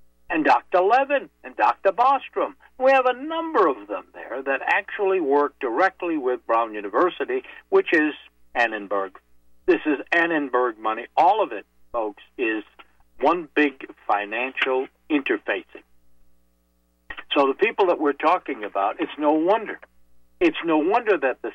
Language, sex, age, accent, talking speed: English, male, 60-79, American, 140 wpm